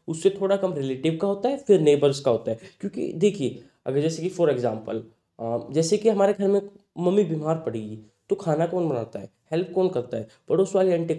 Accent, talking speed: native, 210 wpm